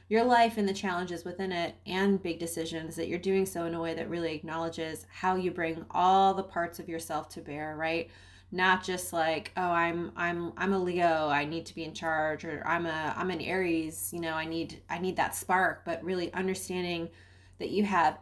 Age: 20-39